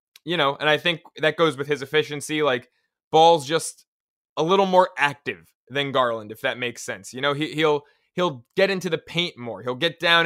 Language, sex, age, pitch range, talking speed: English, male, 20-39, 145-185 Hz, 205 wpm